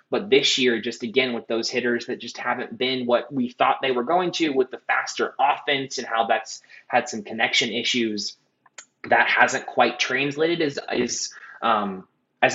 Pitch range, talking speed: 115-145 Hz, 180 wpm